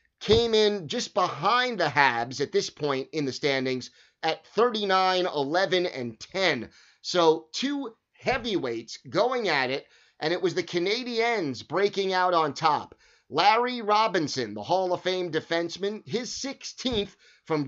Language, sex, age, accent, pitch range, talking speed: English, male, 30-49, American, 150-210 Hz, 145 wpm